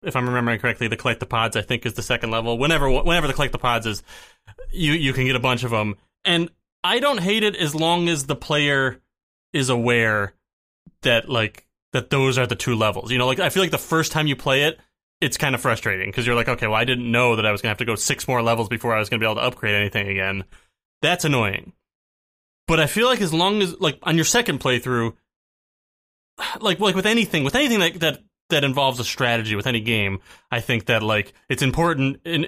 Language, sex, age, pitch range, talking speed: English, male, 20-39, 120-160 Hz, 240 wpm